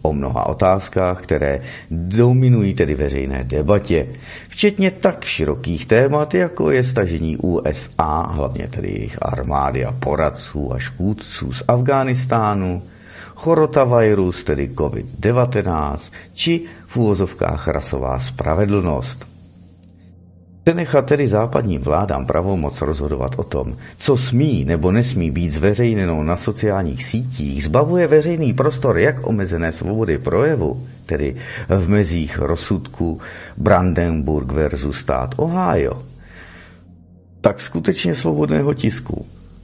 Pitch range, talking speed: 80-120 Hz, 110 wpm